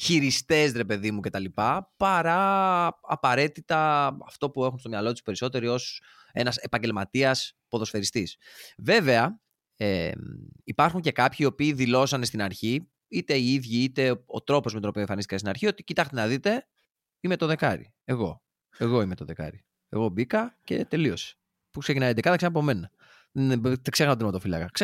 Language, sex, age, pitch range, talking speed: Greek, male, 20-39, 120-180 Hz, 155 wpm